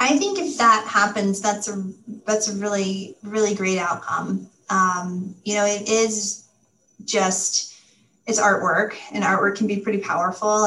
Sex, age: female, 30-49